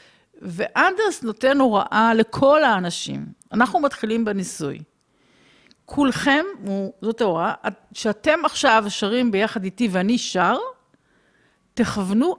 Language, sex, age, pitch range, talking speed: Hebrew, female, 50-69, 195-255 Hz, 90 wpm